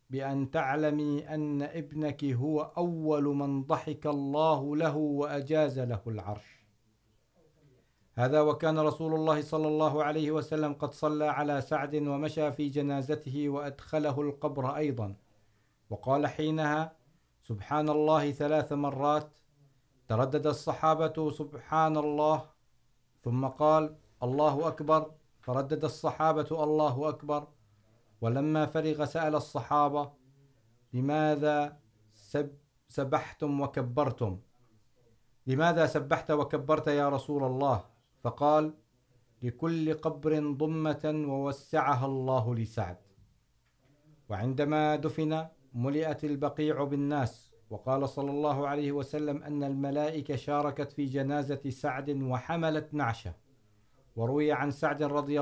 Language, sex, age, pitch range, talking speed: Urdu, male, 50-69, 130-150 Hz, 95 wpm